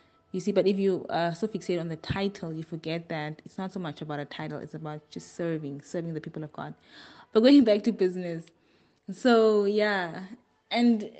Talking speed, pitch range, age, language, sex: 210 wpm, 155-195 Hz, 20-39, English, female